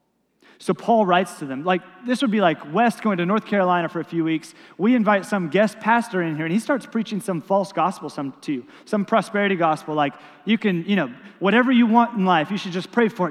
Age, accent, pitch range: 30-49, American, 175-235 Hz